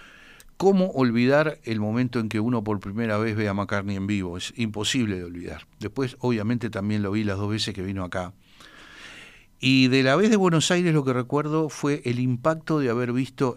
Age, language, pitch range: 60-79, Spanish, 105-130 Hz